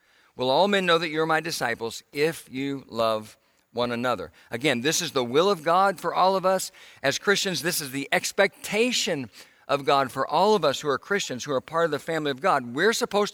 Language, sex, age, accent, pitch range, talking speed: English, male, 50-69, American, 125-170 Hz, 225 wpm